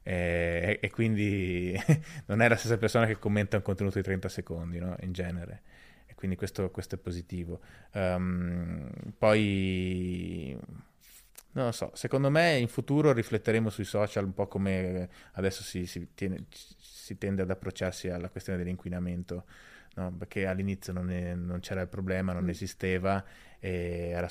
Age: 20-39